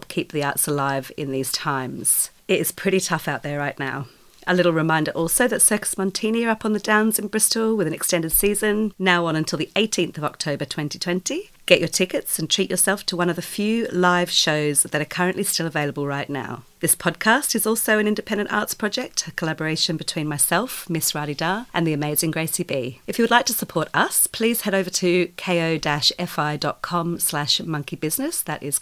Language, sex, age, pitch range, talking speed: English, female, 40-59, 150-200 Hz, 200 wpm